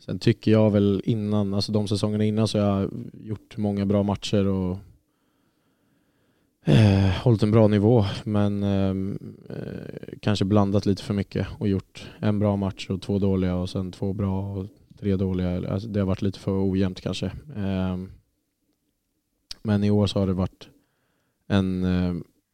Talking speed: 150 wpm